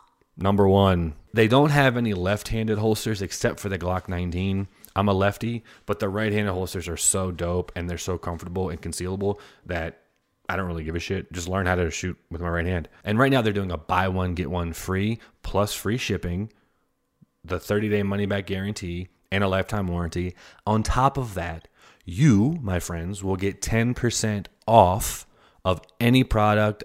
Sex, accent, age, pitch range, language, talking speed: male, American, 30-49, 85-105 Hz, English, 180 wpm